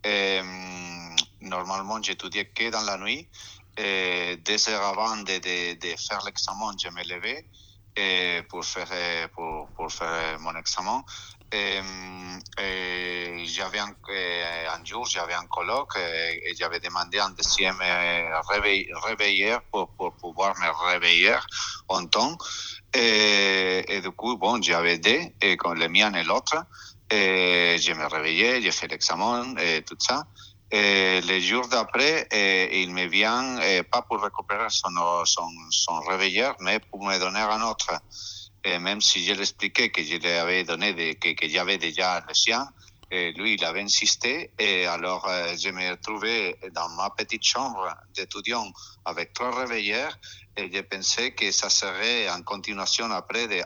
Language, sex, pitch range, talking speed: French, male, 85-100 Hz, 150 wpm